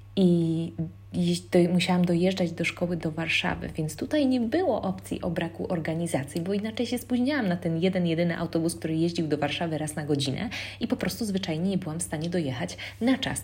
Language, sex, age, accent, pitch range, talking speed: Polish, female, 20-39, native, 135-175 Hz, 190 wpm